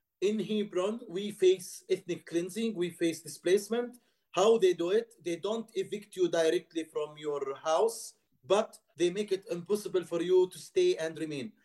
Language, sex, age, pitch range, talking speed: English, male, 50-69, 165-215 Hz, 165 wpm